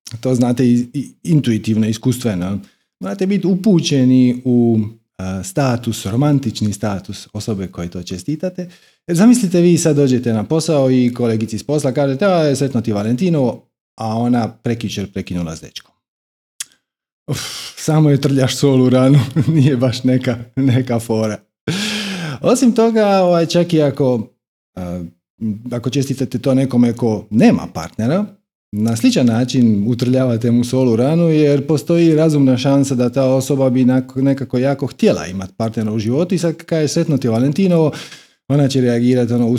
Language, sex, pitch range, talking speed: Croatian, male, 110-140 Hz, 140 wpm